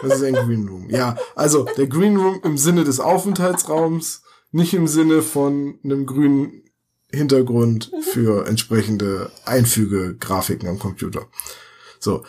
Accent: German